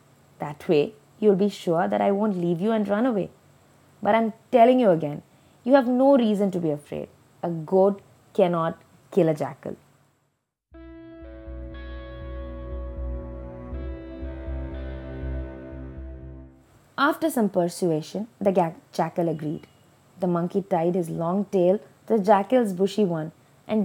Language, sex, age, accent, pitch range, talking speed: English, female, 20-39, Indian, 165-250 Hz, 125 wpm